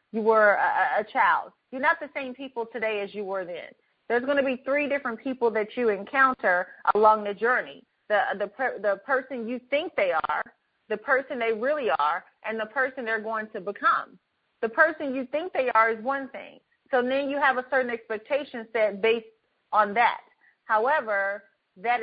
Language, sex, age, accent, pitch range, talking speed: English, female, 30-49, American, 220-285 Hz, 190 wpm